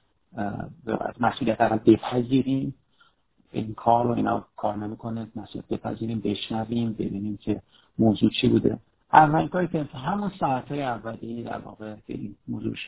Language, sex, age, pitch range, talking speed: Persian, male, 50-69, 110-135 Hz, 135 wpm